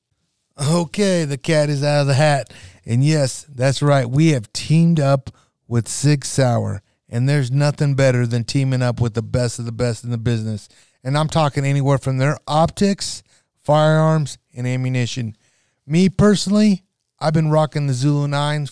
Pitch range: 125-155 Hz